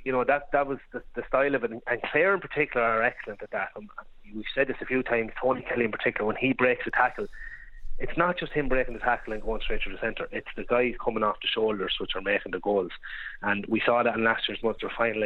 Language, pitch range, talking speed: English, 115-145 Hz, 270 wpm